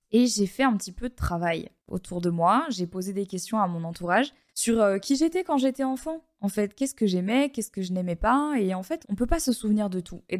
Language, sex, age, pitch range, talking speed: French, female, 20-39, 185-240 Hz, 270 wpm